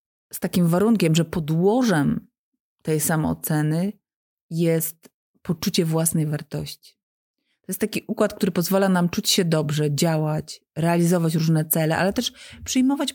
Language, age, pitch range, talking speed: Polish, 30-49, 160-200 Hz, 130 wpm